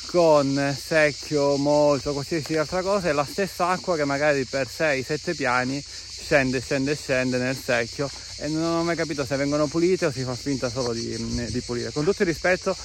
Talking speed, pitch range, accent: 185 wpm, 130-165 Hz, native